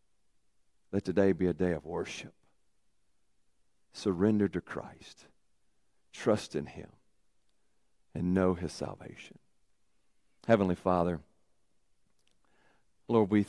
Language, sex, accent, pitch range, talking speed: English, male, American, 80-115 Hz, 95 wpm